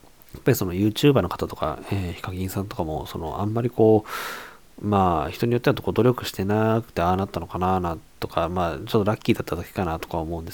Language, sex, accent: Japanese, male, native